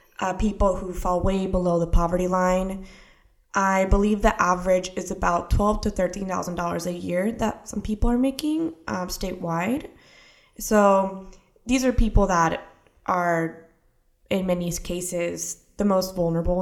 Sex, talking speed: female, 140 wpm